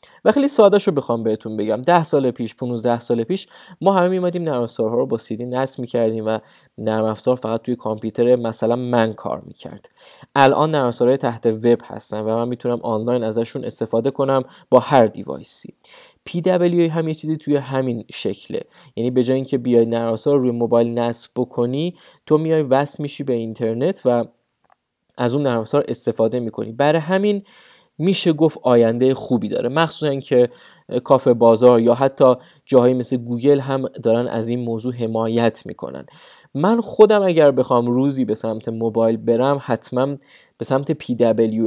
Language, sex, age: English, male, 20-39